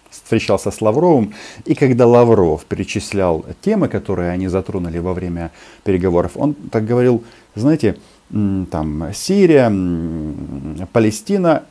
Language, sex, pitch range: Russian, male, 90-130 Hz